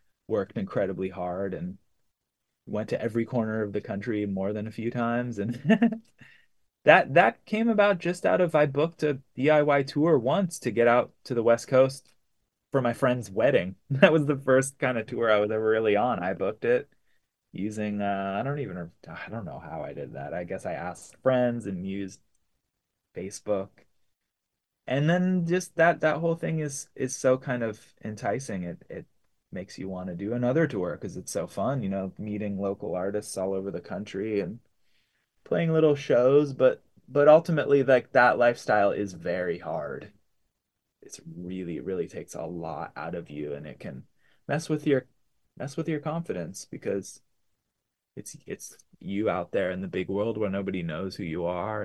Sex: male